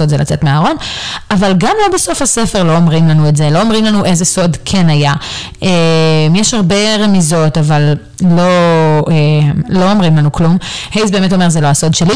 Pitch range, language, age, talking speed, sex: 150-195 Hz, Hebrew, 30-49, 180 wpm, female